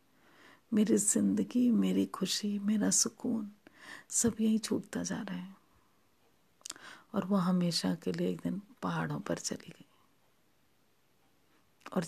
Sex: female